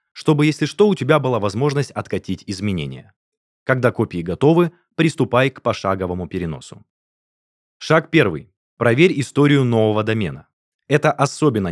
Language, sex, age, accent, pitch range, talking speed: Russian, male, 20-39, native, 100-150 Hz, 125 wpm